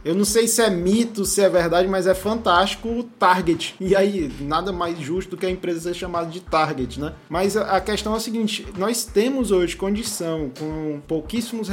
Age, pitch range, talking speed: 20-39, 160-200 Hz, 205 wpm